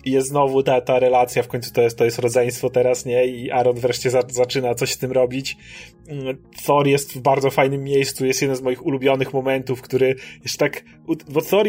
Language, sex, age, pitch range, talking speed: Polish, male, 30-49, 130-155 Hz, 210 wpm